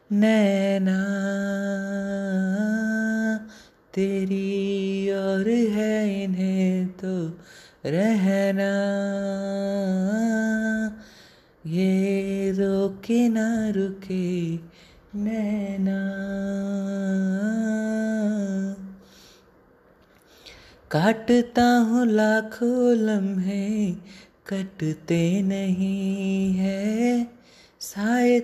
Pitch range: 195-230 Hz